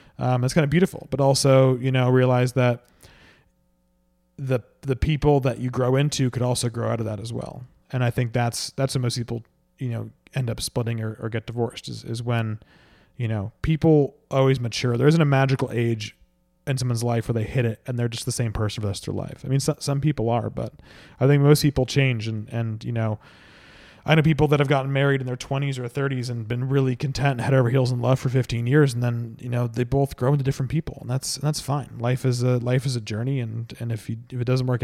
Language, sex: English, male